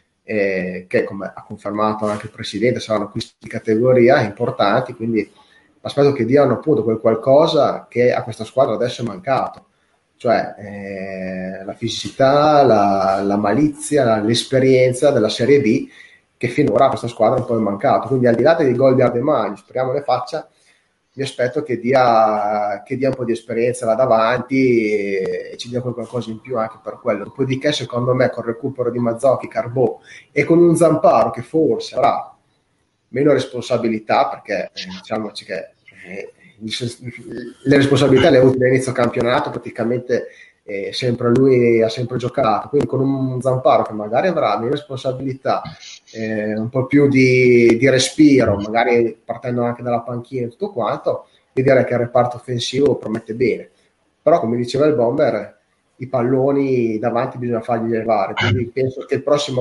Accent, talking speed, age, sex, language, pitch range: Italian, 165 wpm, 30-49, male, Spanish, 110-130 Hz